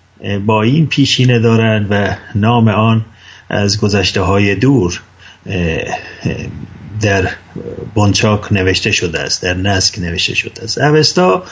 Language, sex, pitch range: English, male, 95-120 Hz